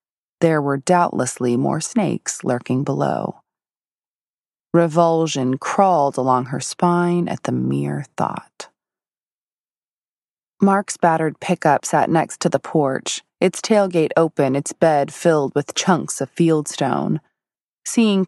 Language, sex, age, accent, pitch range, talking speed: English, female, 20-39, American, 145-180 Hz, 115 wpm